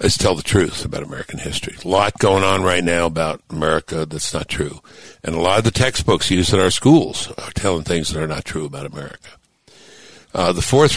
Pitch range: 85-110 Hz